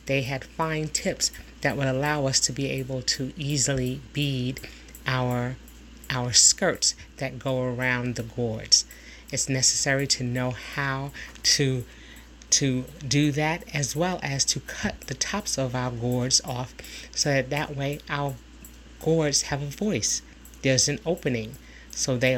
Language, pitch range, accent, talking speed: English, 125-145 Hz, American, 150 wpm